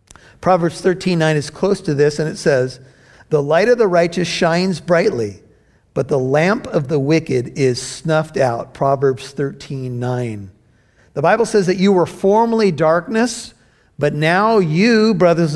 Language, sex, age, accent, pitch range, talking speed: English, male, 50-69, American, 140-190 Hz, 150 wpm